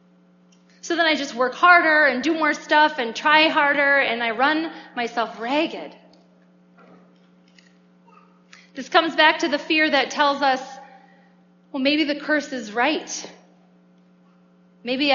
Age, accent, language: 30-49, American, English